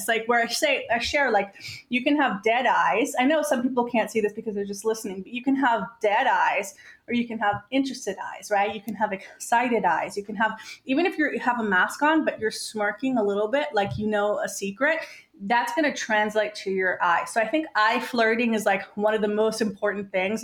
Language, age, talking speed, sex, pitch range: English, 30-49, 240 wpm, female, 210-265 Hz